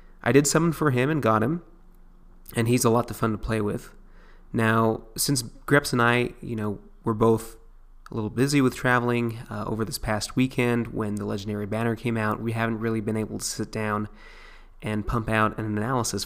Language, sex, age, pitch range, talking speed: English, male, 20-39, 105-125 Hz, 205 wpm